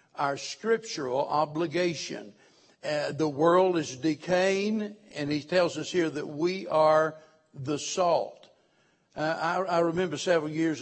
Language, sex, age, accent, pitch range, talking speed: English, male, 60-79, American, 150-180 Hz, 135 wpm